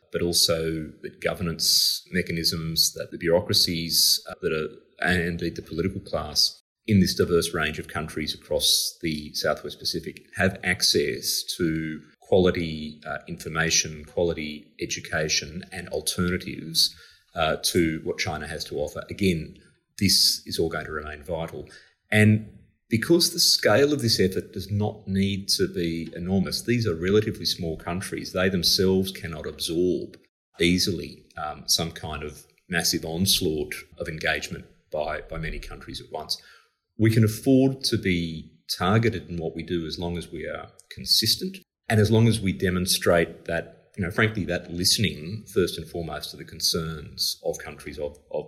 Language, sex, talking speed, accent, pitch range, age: English, male, 155 wpm, Australian, 80-105 Hz, 30-49